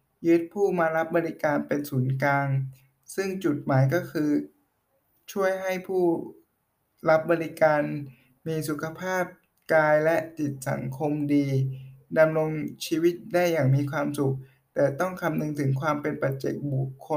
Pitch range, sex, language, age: 135-165 Hz, male, Thai, 60-79